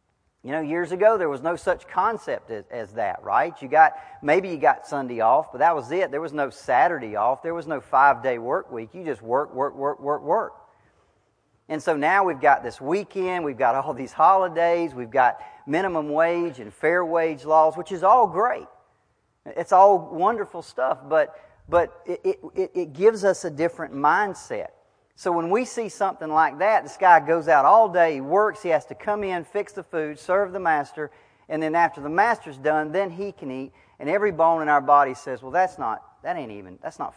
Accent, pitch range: American, 145-195 Hz